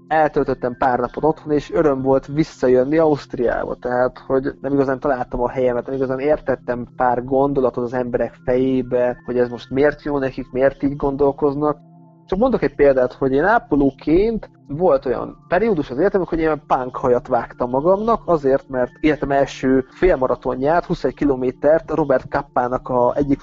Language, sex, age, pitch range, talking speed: Hungarian, male, 30-49, 125-155 Hz, 155 wpm